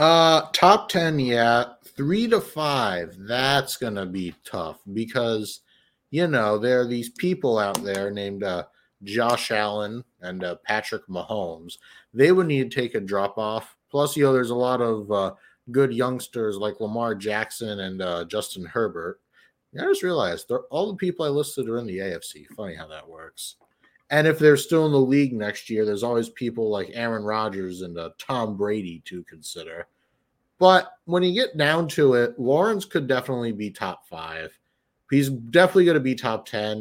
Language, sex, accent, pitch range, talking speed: English, male, American, 105-150 Hz, 185 wpm